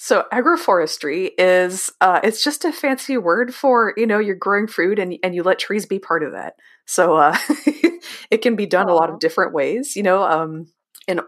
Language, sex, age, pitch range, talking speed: English, female, 20-39, 165-235 Hz, 205 wpm